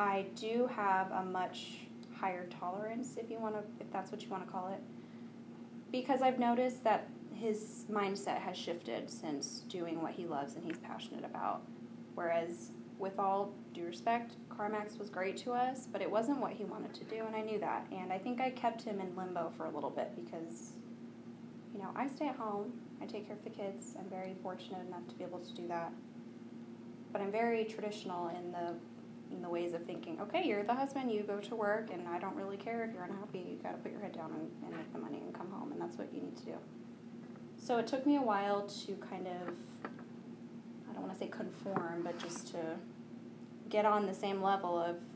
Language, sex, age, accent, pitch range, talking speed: English, female, 10-29, American, 190-230 Hz, 220 wpm